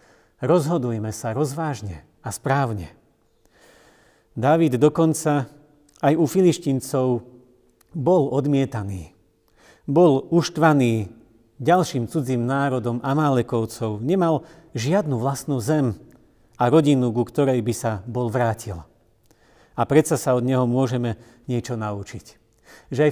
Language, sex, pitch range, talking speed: Slovak, male, 115-150 Hz, 105 wpm